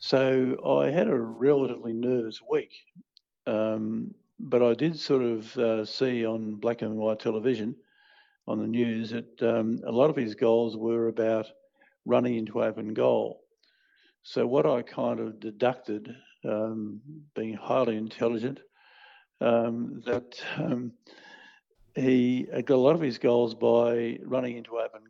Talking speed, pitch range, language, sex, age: 145 wpm, 115-140 Hz, English, male, 60-79